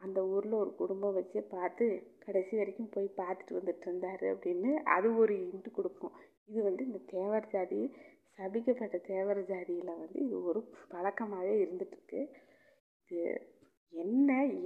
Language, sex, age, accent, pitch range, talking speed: Tamil, female, 30-49, native, 190-240 Hz, 130 wpm